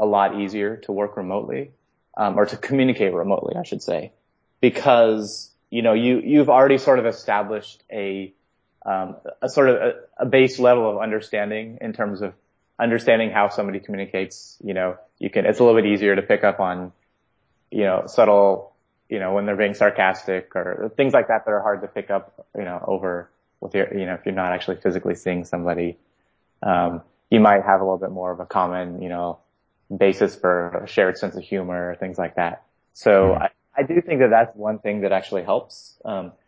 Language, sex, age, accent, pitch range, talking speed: English, male, 20-39, American, 90-105 Hz, 200 wpm